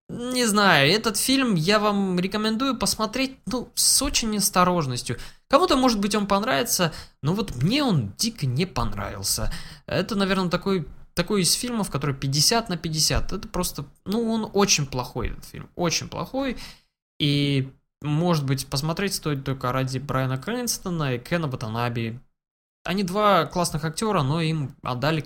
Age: 20-39